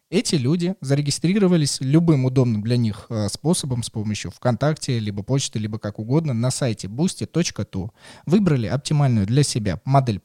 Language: Russian